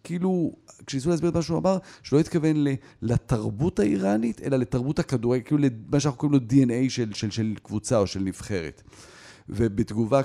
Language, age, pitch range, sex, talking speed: Hebrew, 40-59, 100-140 Hz, male, 170 wpm